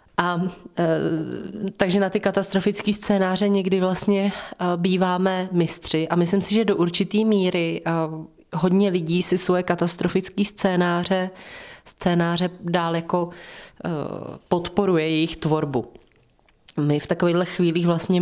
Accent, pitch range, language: native, 160-190 Hz, Czech